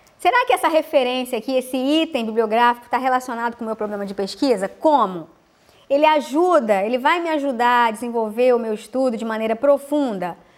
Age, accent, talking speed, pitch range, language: 20-39, Brazilian, 175 wpm, 225-280 Hz, English